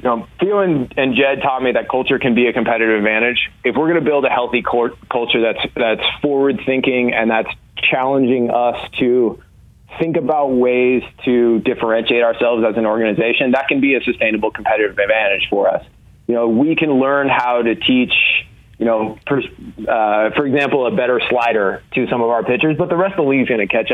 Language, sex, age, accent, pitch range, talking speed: English, male, 20-39, American, 110-130 Hz, 205 wpm